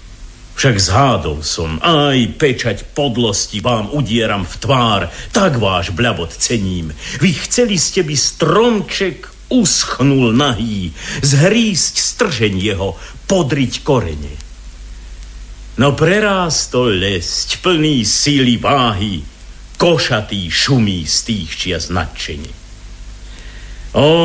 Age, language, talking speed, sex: 50-69, Slovak, 95 wpm, male